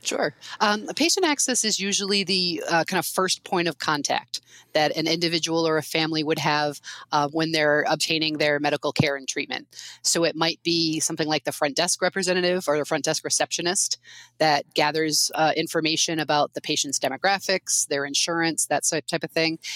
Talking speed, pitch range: 180 wpm, 150-175 Hz